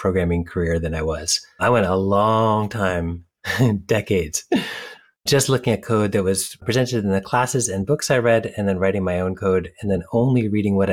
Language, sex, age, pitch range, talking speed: English, male, 30-49, 95-115 Hz, 200 wpm